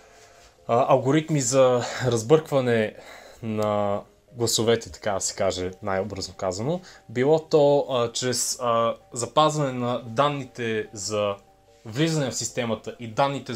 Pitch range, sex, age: 110-145 Hz, male, 20-39